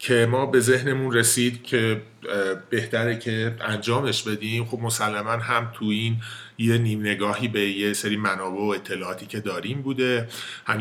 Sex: male